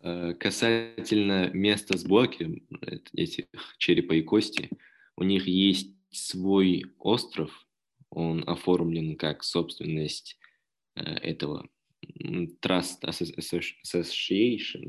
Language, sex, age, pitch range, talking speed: Russian, male, 20-39, 80-95 Hz, 75 wpm